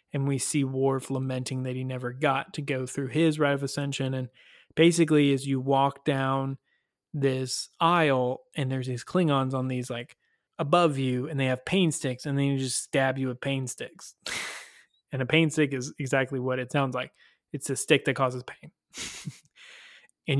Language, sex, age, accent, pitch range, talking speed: English, male, 20-39, American, 130-150 Hz, 190 wpm